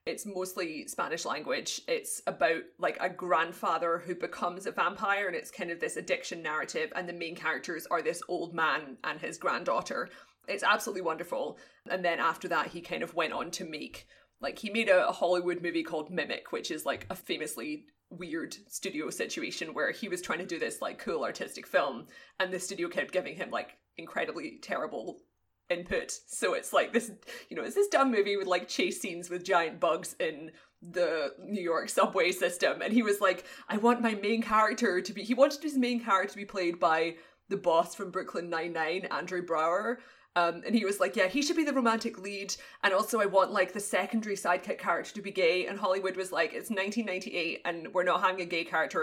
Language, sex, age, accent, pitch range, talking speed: English, female, 20-39, British, 180-260 Hz, 210 wpm